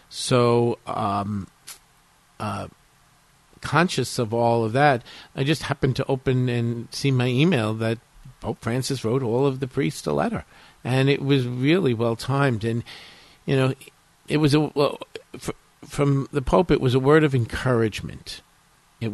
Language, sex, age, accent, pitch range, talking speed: English, male, 50-69, American, 115-140 Hz, 155 wpm